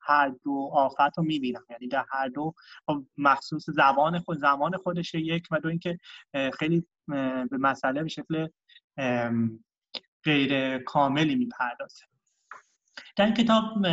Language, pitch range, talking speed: Persian, 140-170 Hz, 130 wpm